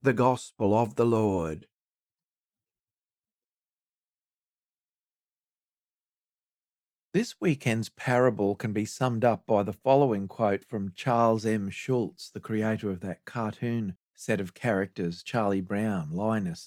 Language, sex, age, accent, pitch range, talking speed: English, male, 40-59, Australian, 105-140 Hz, 110 wpm